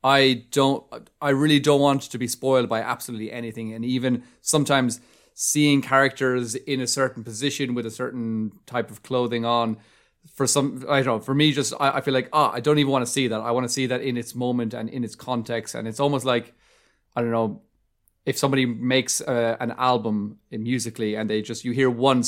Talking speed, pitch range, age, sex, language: 220 wpm, 115-135 Hz, 20-39, male, English